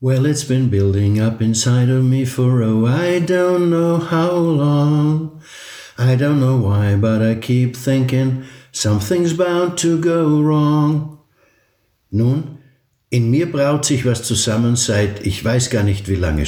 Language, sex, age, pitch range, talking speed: German, male, 60-79, 100-130 Hz, 155 wpm